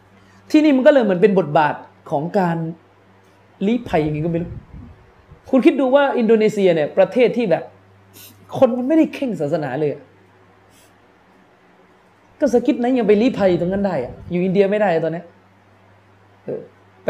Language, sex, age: Thai, male, 20-39